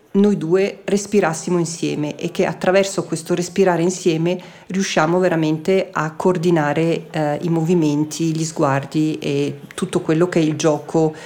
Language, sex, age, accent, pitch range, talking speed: Italian, female, 40-59, native, 160-195 Hz, 140 wpm